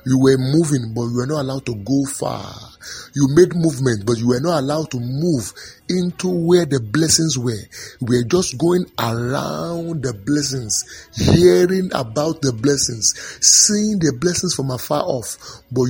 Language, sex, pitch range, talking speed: English, male, 125-175 Hz, 165 wpm